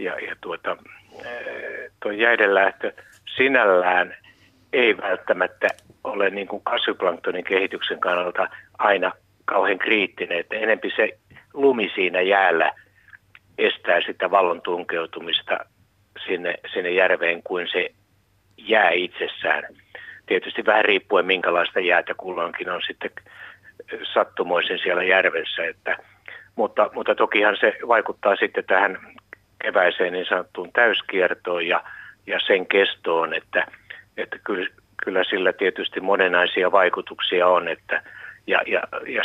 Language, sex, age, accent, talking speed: Finnish, male, 60-79, native, 110 wpm